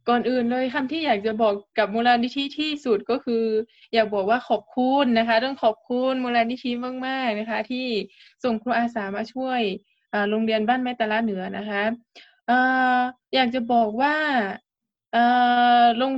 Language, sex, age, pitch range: Thai, female, 20-39, 220-260 Hz